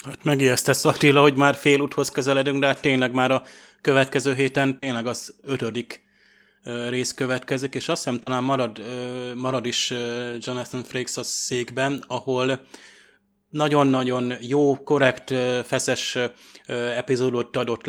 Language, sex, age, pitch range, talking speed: Hungarian, male, 20-39, 120-135 Hz, 125 wpm